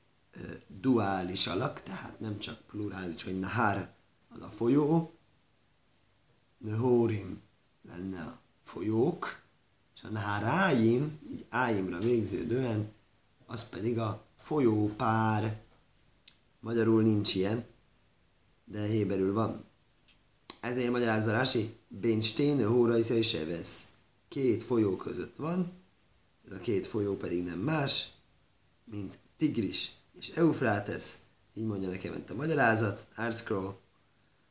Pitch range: 100-120 Hz